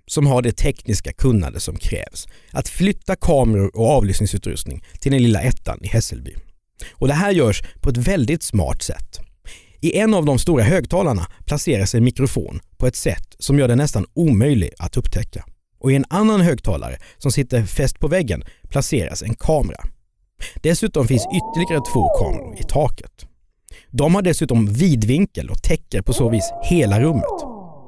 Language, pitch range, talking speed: Swedish, 95-150 Hz, 165 wpm